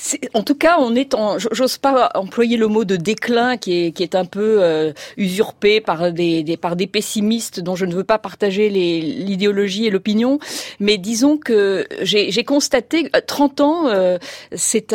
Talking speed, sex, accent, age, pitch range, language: 195 wpm, female, French, 40-59, 195-255 Hz, French